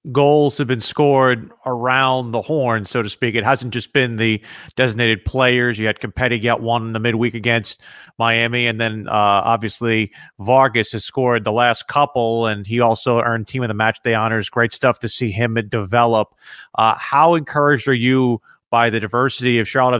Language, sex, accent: English, male, American